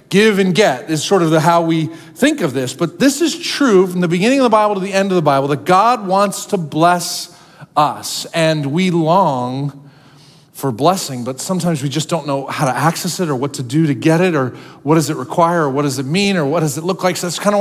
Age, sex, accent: 40-59, male, American